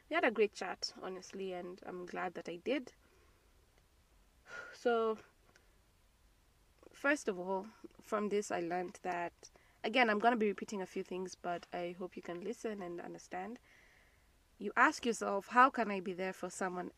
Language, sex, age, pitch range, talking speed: English, female, 20-39, 185-230 Hz, 170 wpm